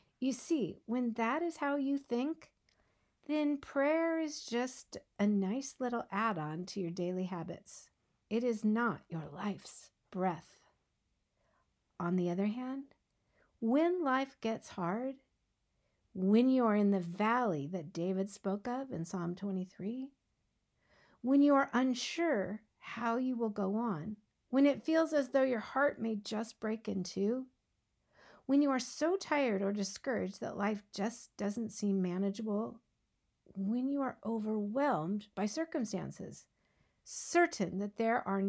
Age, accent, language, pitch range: 50-69, American, English, 190-260 Hz